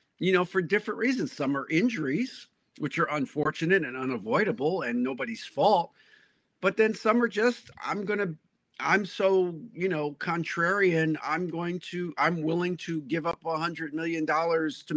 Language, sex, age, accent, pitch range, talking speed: English, male, 50-69, American, 150-205 Hz, 160 wpm